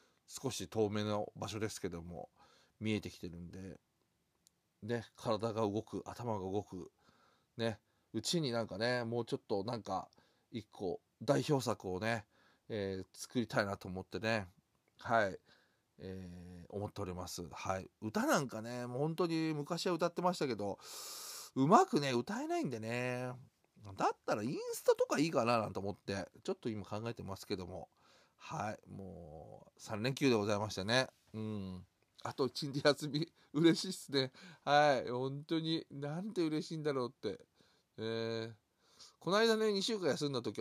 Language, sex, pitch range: Japanese, male, 100-145 Hz